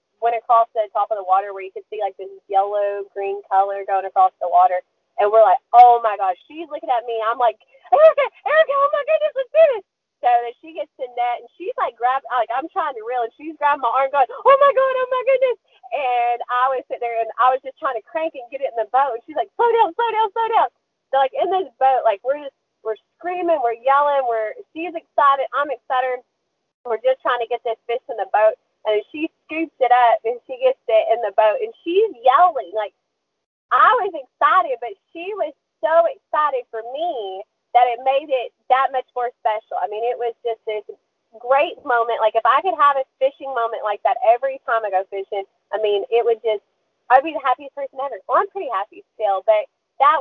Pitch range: 225-320 Hz